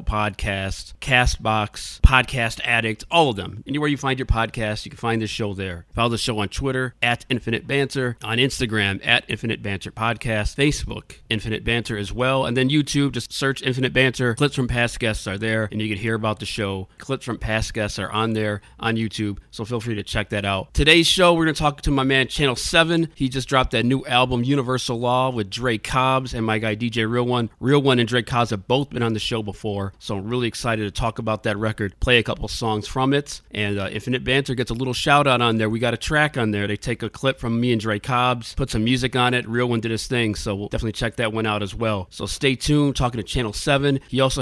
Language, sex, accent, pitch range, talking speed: English, male, American, 110-130 Hz, 245 wpm